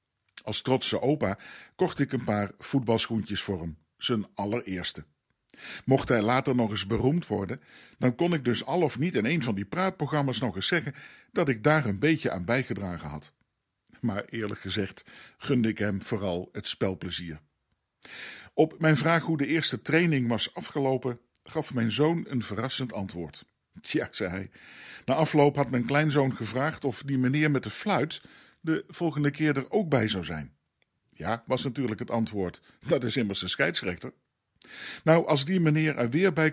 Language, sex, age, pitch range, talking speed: Dutch, male, 50-69, 105-150 Hz, 175 wpm